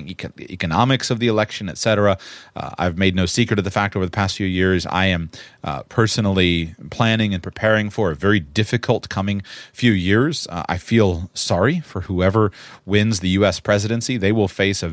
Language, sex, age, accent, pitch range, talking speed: English, male, 30-49, American, 95-120 Hz, 180 wpm